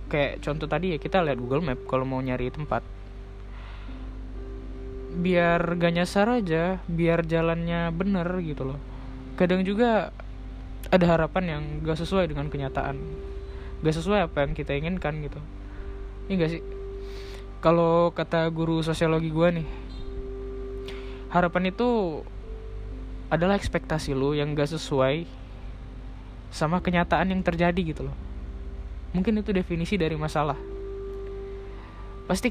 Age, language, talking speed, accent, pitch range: 20-39, Indonesian, 120 wpm, native, 115-175 Hz